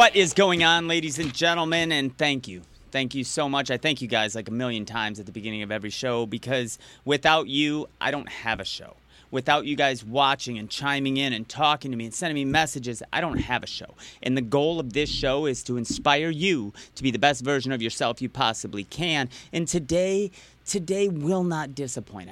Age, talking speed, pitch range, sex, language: 30-49, 220 wpm, 130-175 Hz, male, English